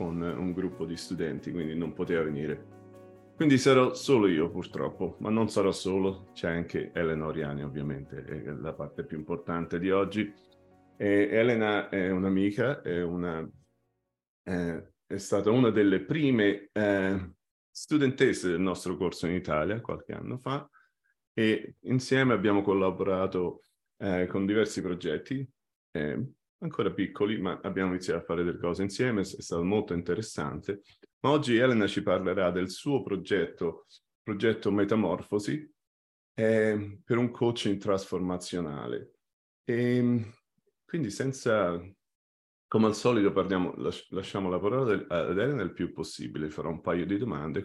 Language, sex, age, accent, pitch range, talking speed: Italian, male, 30-49, native, 85-110 Hz, 130 wpm